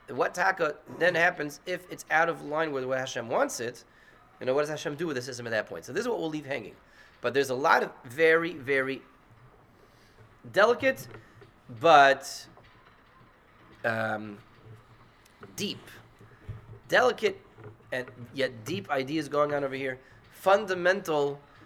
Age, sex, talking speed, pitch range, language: 30-49, male, 150 wpm, 115-150 Hz, English